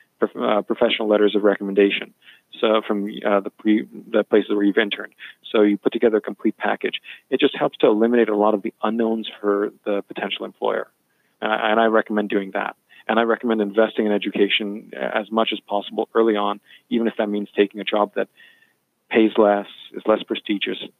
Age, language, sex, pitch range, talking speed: 40-59, English, male, 105-115 Hz, 190 wpm